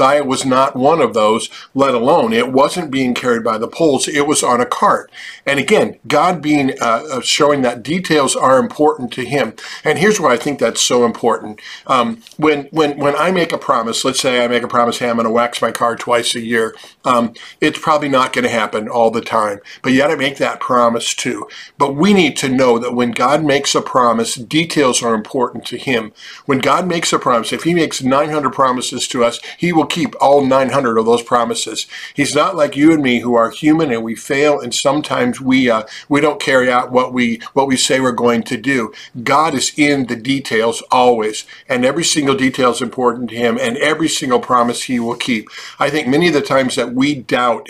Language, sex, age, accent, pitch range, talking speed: English, male, 50-69, American, 120-150 Hz, 225 wpm